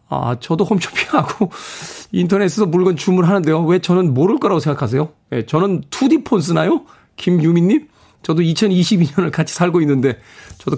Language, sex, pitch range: Korean, male, 125-175 Hz